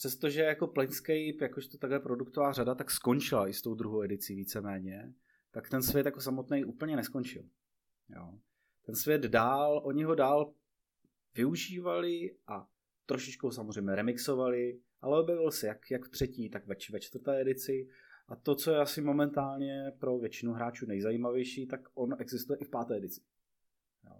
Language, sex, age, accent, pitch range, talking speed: Czech, male, 30-49, native, 125-155 Hz, 165 wpm